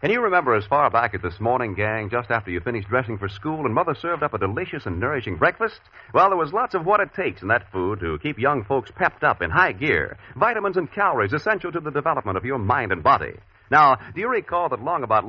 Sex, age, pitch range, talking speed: male, 50-69, 115-180 Hz, 255 wpm